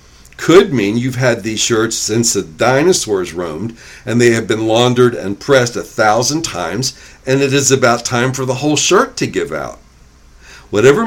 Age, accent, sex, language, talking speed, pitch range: 60-79, American, male, English, 180 wpm, 105-140 Hz